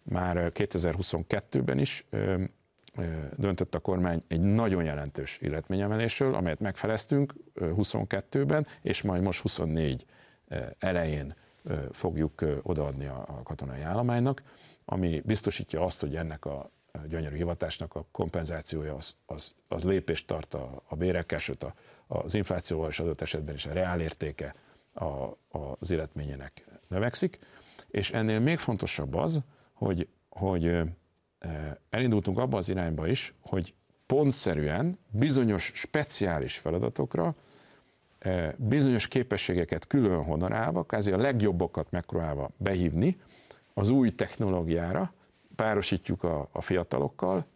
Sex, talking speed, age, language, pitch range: male, 105 wpm, 50-69, Hungarian, 80-105 Hz